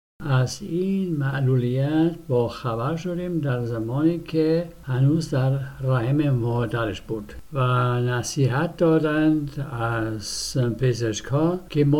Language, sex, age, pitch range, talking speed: Persian, male, 60-79, 120-155 Hz, 105 wpm